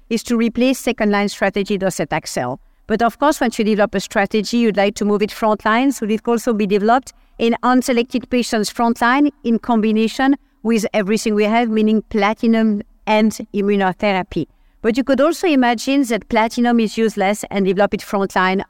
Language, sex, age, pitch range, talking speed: English, female, 50-69, 205-245 Hz, 175 wpm